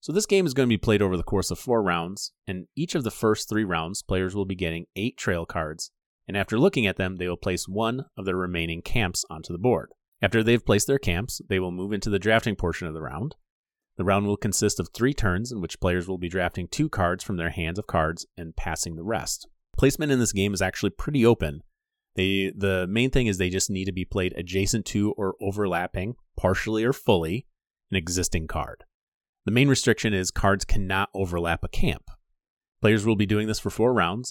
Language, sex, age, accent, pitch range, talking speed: English, male, 30-49, American, 90-115 Hz, 225 wpm